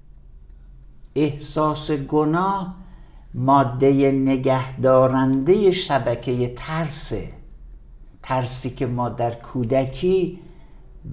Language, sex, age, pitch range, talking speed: Persian, male, 60-79, 105-135 Hz, 60 wpm